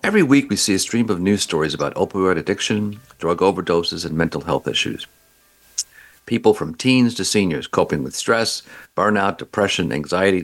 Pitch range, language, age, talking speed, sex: 85-110 Hz, English, 50-69, 165 wpm, male